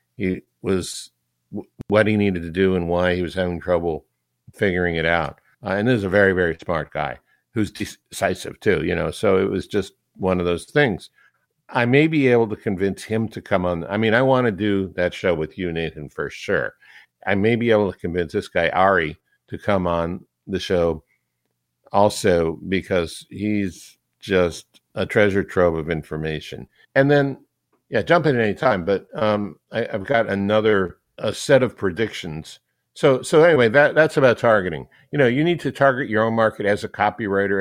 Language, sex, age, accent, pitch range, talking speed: English, male, 60-79, American, 90-110 Hz, 195 wpm